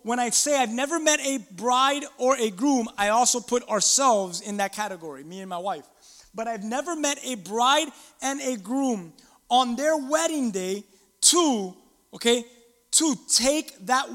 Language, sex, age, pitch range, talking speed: English, male, 20-39, 195-265 Hz, 170 wpm